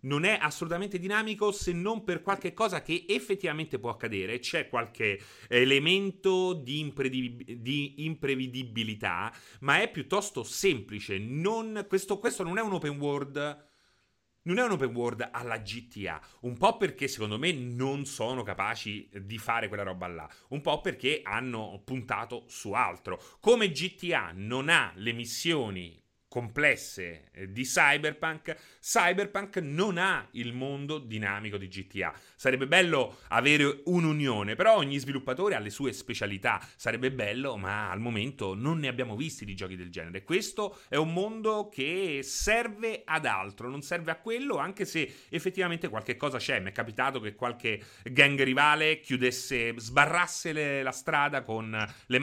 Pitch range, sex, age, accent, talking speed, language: 115-175 Hz, male, 30-49, native, 150 wpm, Italian